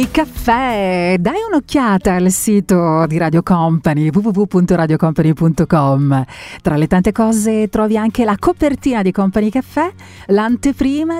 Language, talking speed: Italian, 115 wpm